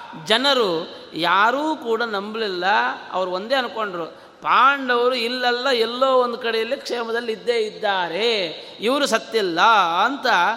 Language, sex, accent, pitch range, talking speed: Kannada, male, native, 170-235 Hz, 100 wpm